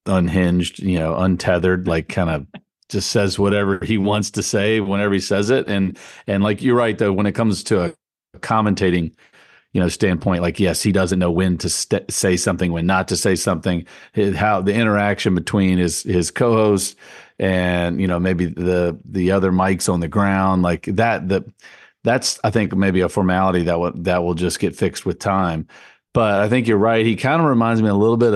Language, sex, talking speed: English, male, 205 wpm